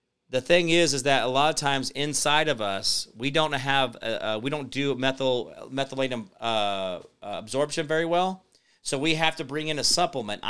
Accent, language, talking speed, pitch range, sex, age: American, English, 185 wpm, 125-155 Hz, male, 40-59